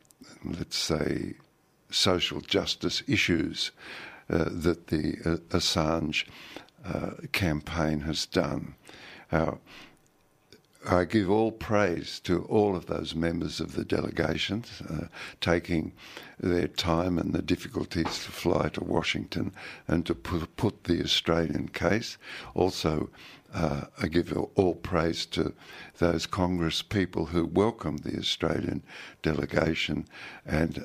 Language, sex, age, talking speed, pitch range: English, male, 60-79, 120 wpm, 80-90 Hz